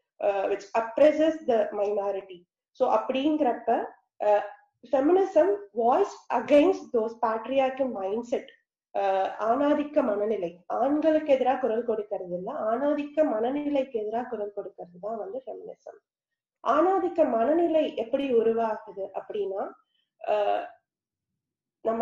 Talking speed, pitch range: 105 wpm, 215-295 Hz